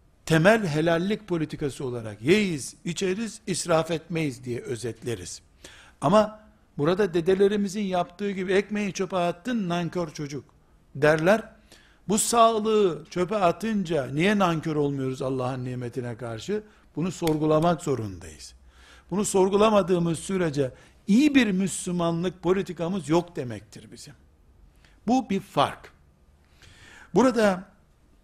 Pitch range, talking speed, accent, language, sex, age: 130-195 Hz, 100 wpm, native, Turkish, male, 60-79